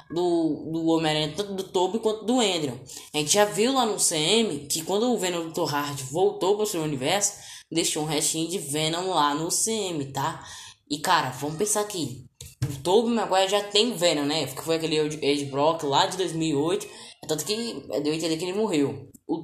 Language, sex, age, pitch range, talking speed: Portuguese, female, 10-29, 155-210 Hz, 200 wpm